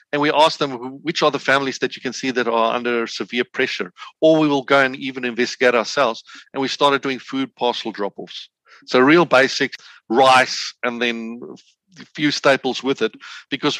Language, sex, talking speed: English, male, 190 wpm